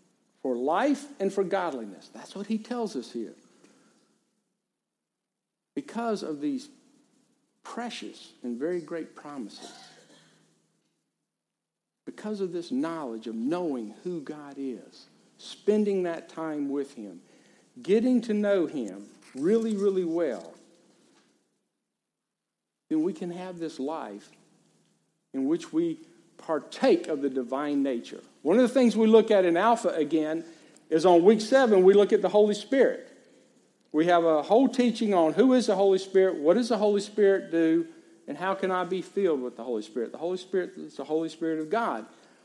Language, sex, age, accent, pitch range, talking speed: English, male, 60-79, American, 165-225 Hz, 155 wpm